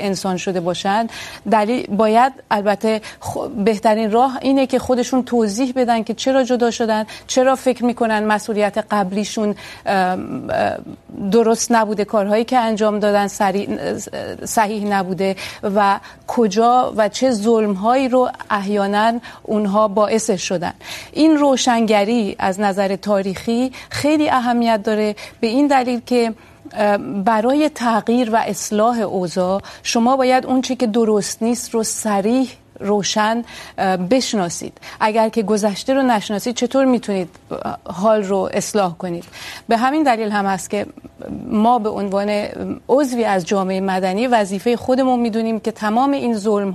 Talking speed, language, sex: 125 wpm, Urdu, female